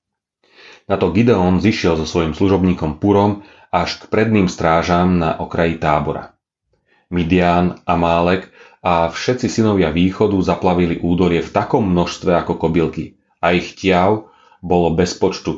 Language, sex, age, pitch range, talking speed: Slovak, male, 30-49, 80-100 Hz, 130 wpm